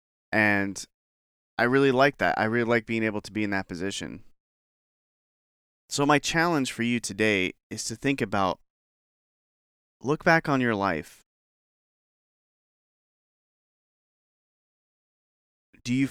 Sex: male